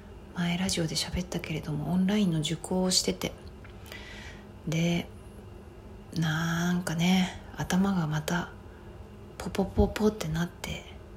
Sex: female